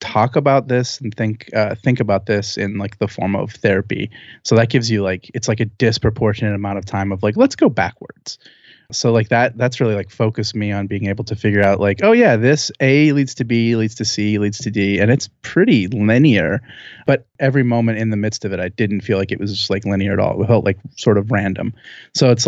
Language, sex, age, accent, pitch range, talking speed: English, male, 30-49, American, 100-120 Hz, 245 wpm